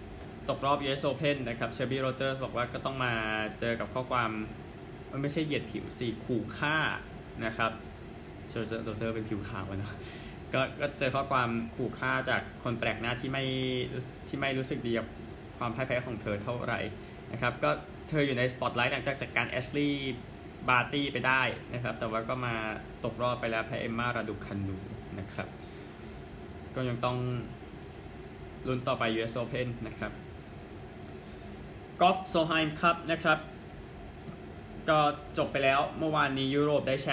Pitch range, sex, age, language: 115-140 Hz, male, 20-39, Thai